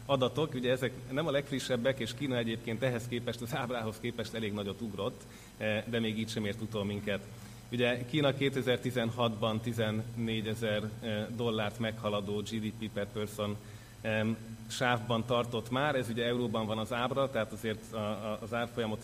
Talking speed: 150 wpm